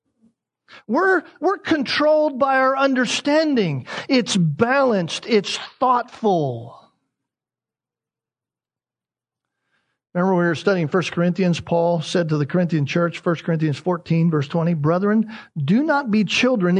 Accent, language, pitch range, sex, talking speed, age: American, English, 180-280 Hz, male, 120 wpm, 50-69